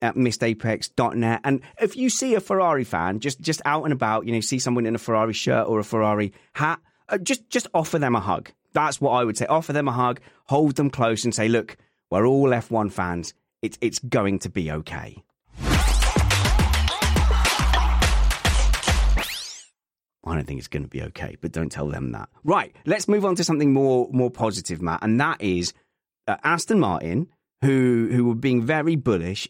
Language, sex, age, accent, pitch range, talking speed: English, male, 30-49, British, 105-135 Hz, 185 wpm